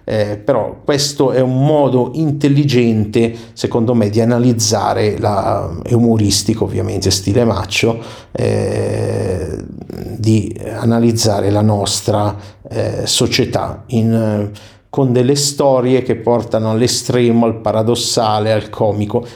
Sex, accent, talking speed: male, native, 100 wpm